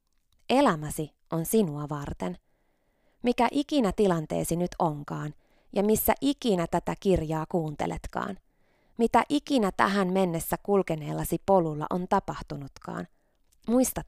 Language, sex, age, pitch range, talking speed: Finnish, female, 20-39, 155-225 Hz, 100 wpm